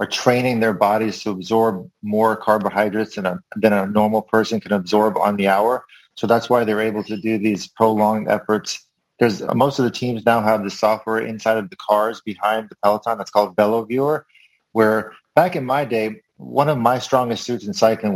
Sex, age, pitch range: male, 30-49, 110-130 Hz